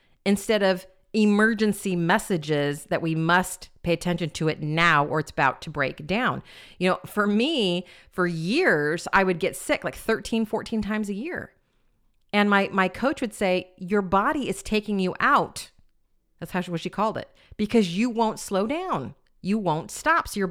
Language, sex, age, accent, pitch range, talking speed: English, female, 40-59, American, 160-215 Hz, 185 wpm